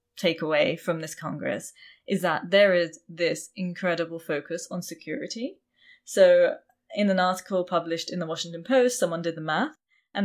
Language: English